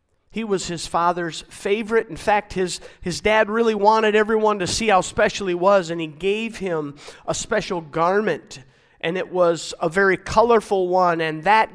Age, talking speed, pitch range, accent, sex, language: 50-69, 180 wpm, 155-205 Hz, American, male, English